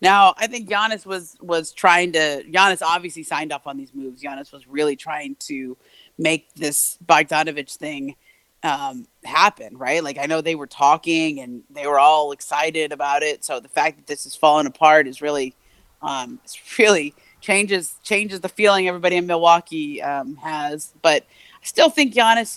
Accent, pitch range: American, 145-200 Hz